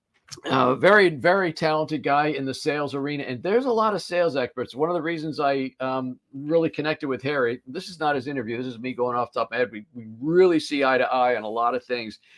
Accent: American